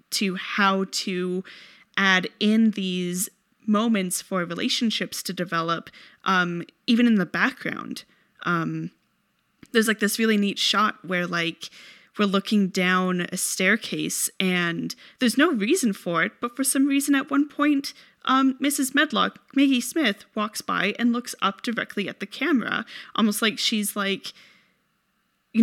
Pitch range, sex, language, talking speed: 180-230 Hz, female, English, 145 wpm